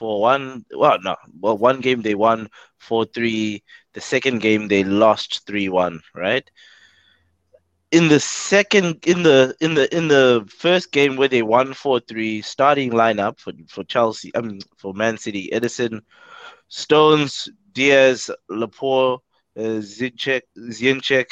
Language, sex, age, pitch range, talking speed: English, male, 20-39, 110-140 Hz, 145 wpm